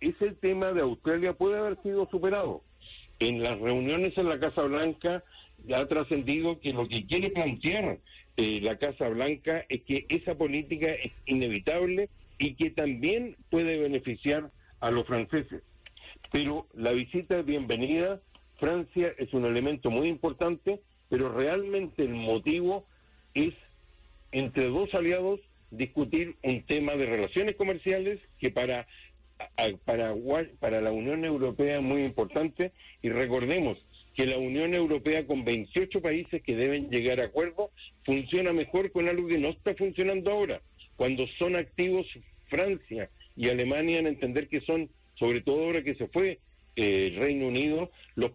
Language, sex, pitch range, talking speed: English, male, 130-175 Hz, 145 wpm